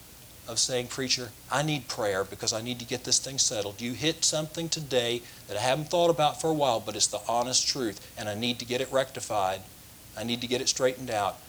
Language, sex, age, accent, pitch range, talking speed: English, male, 40-59, American, 110-150 Hz, 235 wpm